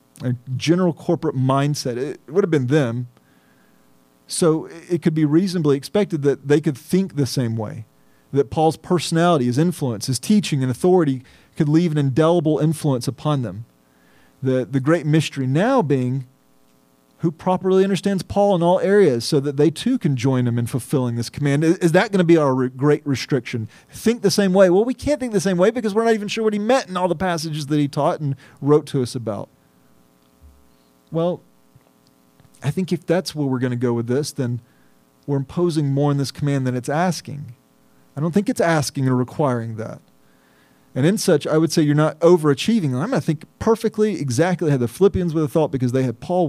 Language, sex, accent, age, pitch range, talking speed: English, male, American, 40-59, 125-170 Hz, 200 wpm